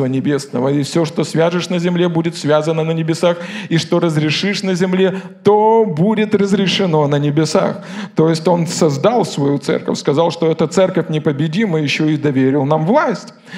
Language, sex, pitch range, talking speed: Russian, male, 155-210 Hz, 165 wpm